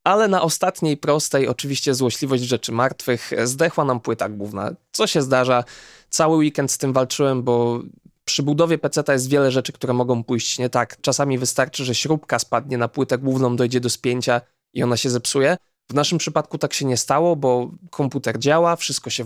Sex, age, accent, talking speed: male, 20-39, native, 185 wpm